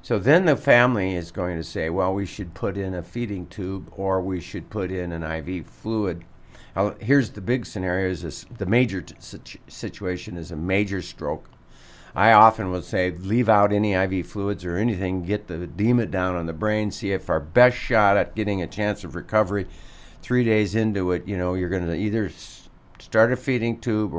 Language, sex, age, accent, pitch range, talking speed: English, male, 50-69, American, 85-105 Hz, 195 wpm